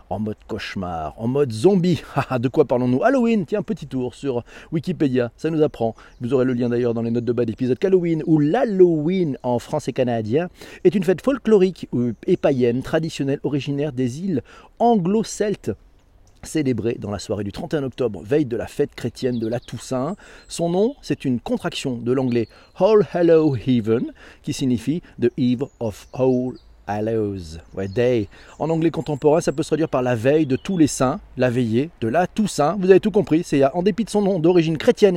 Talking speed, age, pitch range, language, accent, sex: 190 wpm, 40-59, 120-165 Hz, French, French, male